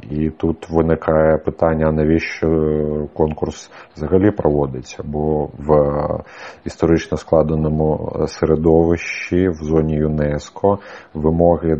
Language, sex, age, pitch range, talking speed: Ukrainian, male, 40-59, 75-85 Hz, 85 wpm